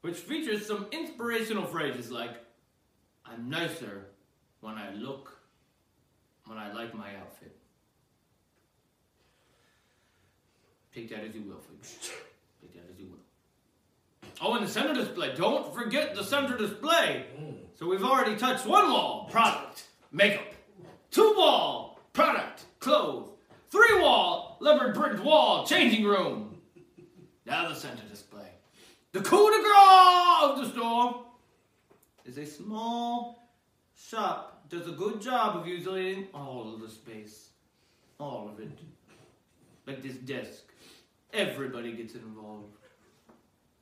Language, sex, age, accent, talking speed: English, male, 30-49, American, 125 wpm